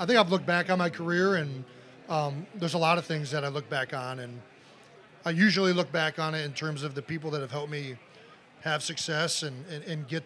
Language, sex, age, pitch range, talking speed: English, male, 40-59, 145-170 Hz, 245 wpm